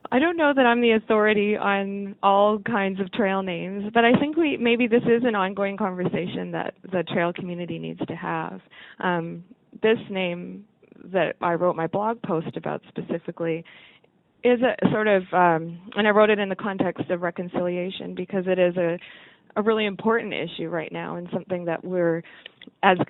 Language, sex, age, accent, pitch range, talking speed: English, female, 20-39, American, 170-210 Hz, 180 wpm